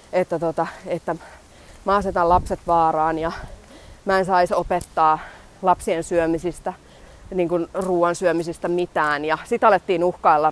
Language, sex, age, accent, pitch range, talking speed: Finnish, female, 20-39, native, 160-195 Hz, 125 wpm